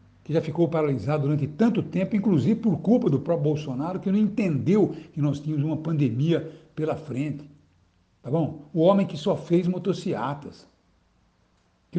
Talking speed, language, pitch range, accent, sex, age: 160 wpm, Portuguese, 140-180 Hz, Brazilian, male, 60-79